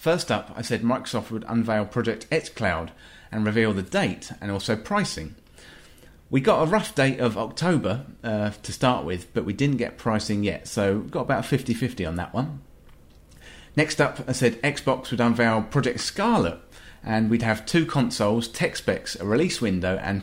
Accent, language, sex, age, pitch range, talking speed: British, English, male, 30-49, 100-135 Hz, 185 wpm